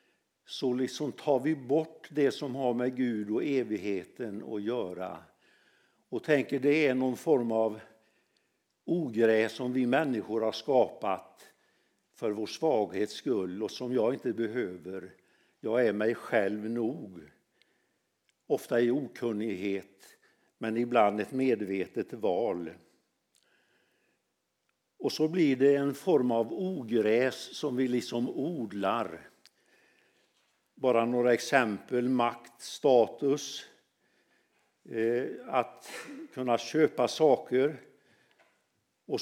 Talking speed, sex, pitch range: 110 wpm, male, 110-140 Hz